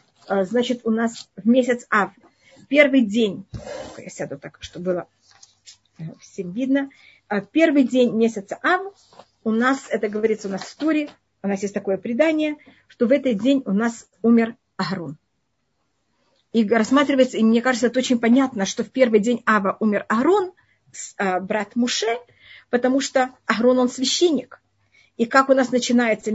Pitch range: 205-260 Hz